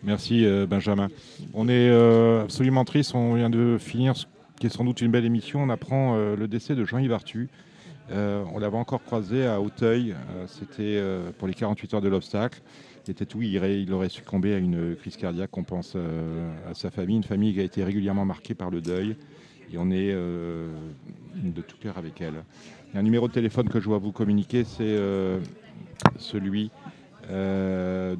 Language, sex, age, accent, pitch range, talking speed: French, male, 40-59, French, 95-115 Hz, 195 wpm